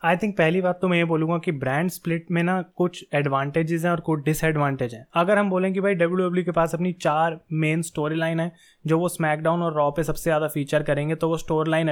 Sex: male